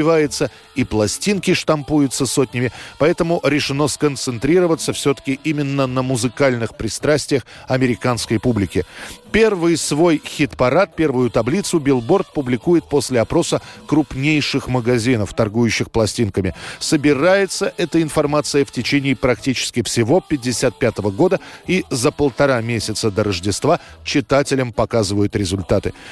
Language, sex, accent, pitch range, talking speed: Russian, male, native, 120-155 Hz, 105 wpm